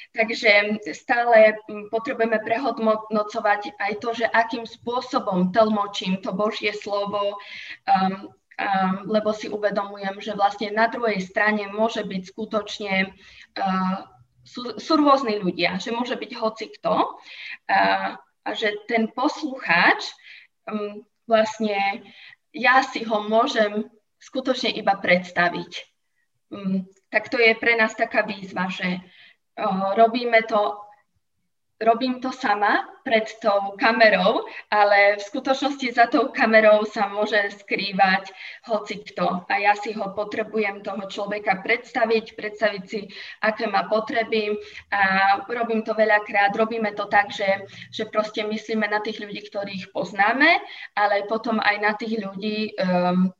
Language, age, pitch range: Slovak, 20-39, 200-225 Hz